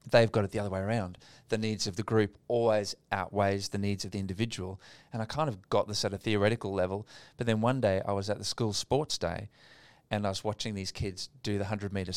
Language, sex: English, male